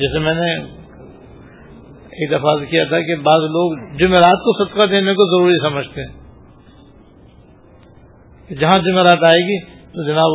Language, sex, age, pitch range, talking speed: Urdu, male, 50-69, 145-180 Hz, 145 wpm